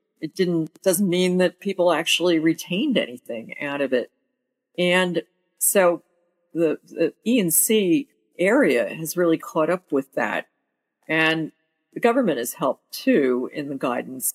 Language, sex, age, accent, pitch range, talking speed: English, female, 50-69, American, 145-180 Hz, 140 wpm